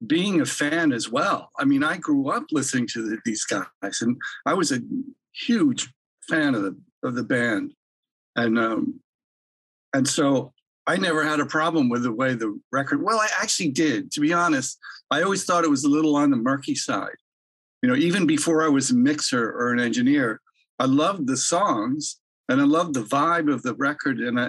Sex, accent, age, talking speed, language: male, American, 60-79, 200 wpm, English